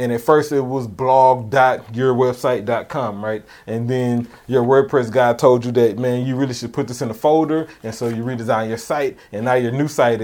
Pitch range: 125-155 Hz